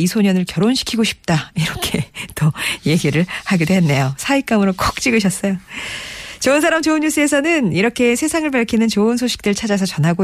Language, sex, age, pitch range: Korean, female, 40-59, 150-215 Hz